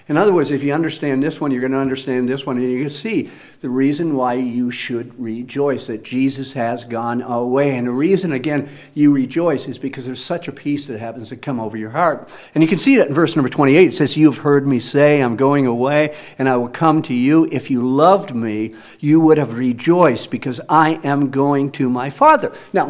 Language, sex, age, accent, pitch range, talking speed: English, male, 50-69, American, 135-210 Hz, 230 wpm